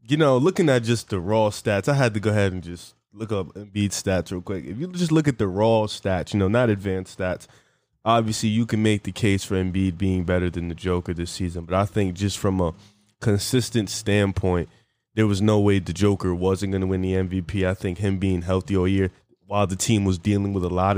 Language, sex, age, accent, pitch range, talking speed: English, male, 20-39, American, 95-110 Hz, 240 wpm